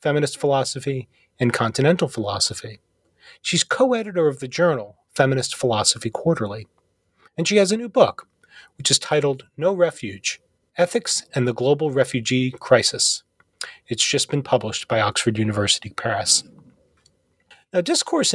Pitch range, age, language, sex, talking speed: 115-155 Hz, 30-49, English, male, 130 wpm